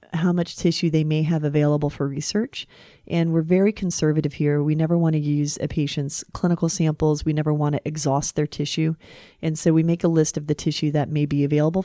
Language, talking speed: English, 220 wpm